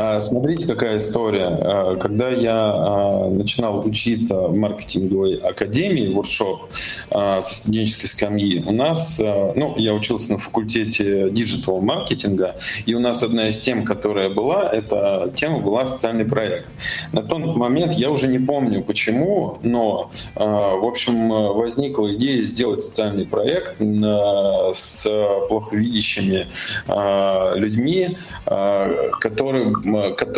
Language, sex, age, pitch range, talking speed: Russian, male, 20-39, 100-120 Hz, 110 wpm